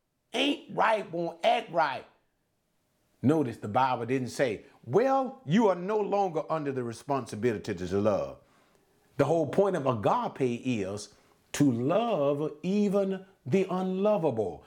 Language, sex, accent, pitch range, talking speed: English, male, American, 185-250 Hz, 125 wpm